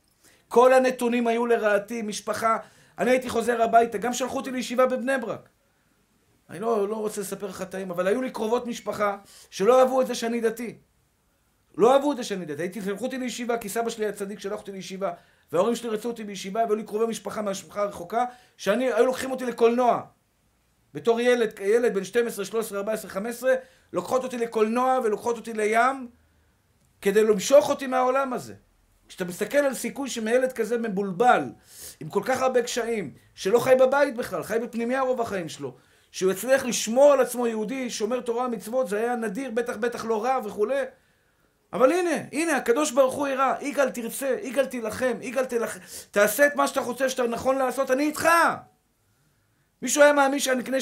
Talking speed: 175 wpm